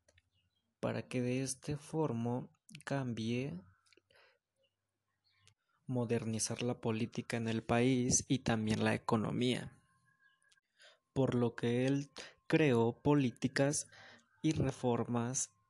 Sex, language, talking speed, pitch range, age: male, Spanish, 90 wpm, 115-135 Hz, 20-39